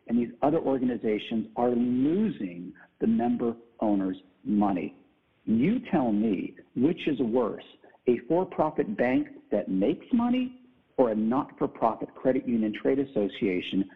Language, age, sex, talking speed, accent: English, 50-69, male, 125 wpm, American